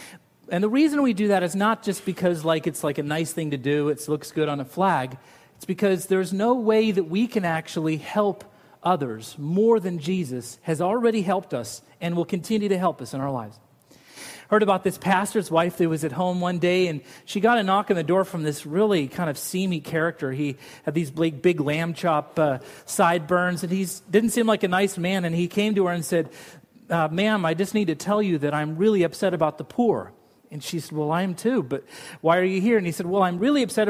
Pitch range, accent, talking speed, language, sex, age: 165-210 Hz, American, 240 wpm, English, male, 40-59